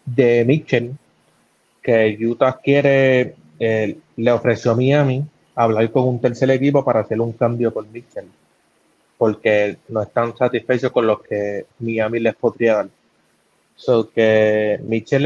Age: 20-39